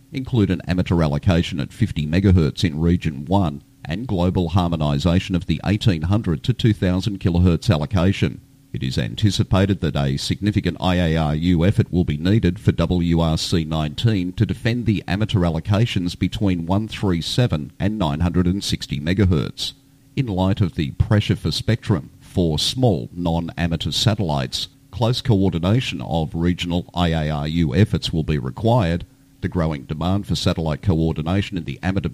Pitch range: 85-105 Hz